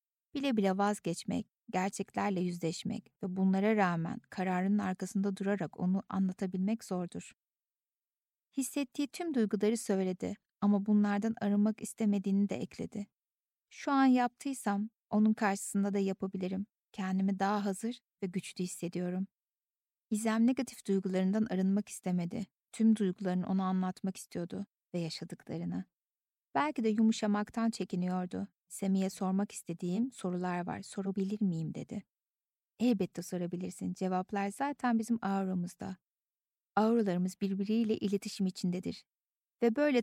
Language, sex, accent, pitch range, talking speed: Turkish, female, native, 185-220 Hz, 110 wpm